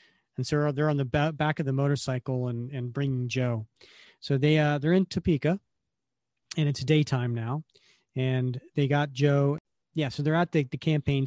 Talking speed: 190 wpm